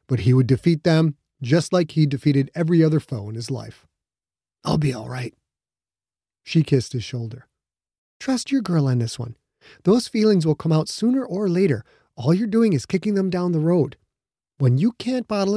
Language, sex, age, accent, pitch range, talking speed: English, male, 30-49, American, 125-175 Hz, 195 wpm